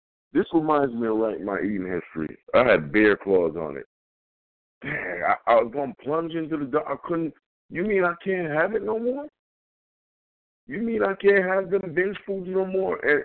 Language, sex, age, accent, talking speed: English, male, 60-79, American, 200 wpm